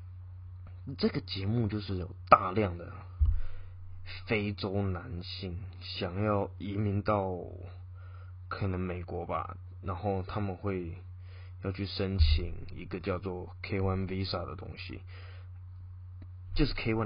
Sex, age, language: male, 20-39, Chinese